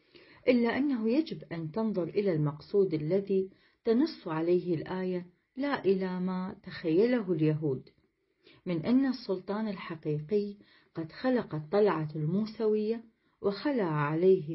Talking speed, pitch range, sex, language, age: 105 wpm, 165-225 Hz, female, Arabic, 40-59